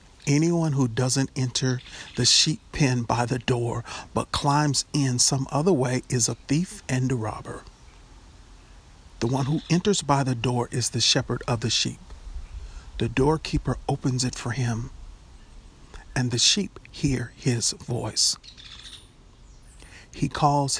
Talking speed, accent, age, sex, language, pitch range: 140 wpm, American, 50-69, male, English, 120-140 Hz